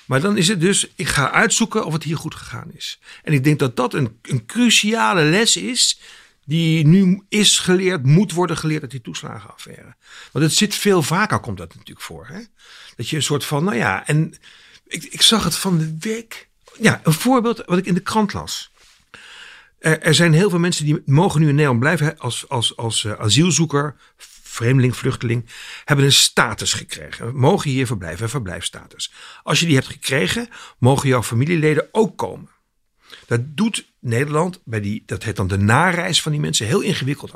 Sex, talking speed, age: male, 195 wpm, 60-79